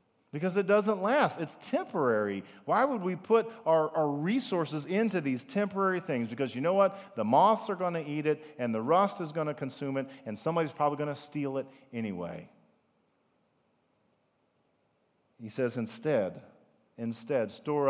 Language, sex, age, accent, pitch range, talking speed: English, male, 40-59, American, 110-160 Hz, 165 wpm